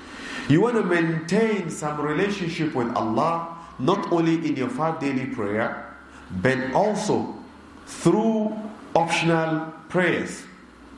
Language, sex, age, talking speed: English, male, 50-69, 110 wpm